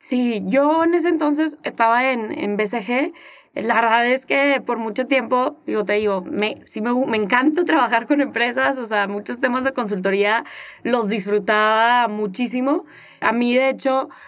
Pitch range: 225-280 Hz